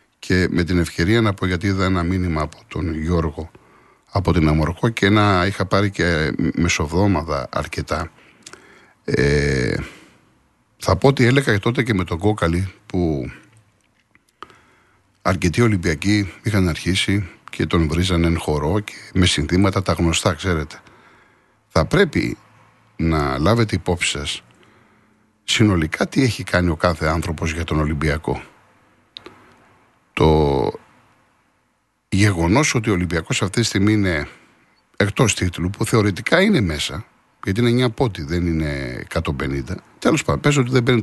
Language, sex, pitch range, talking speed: Greek, male, 80-110 Hz, 135 wpm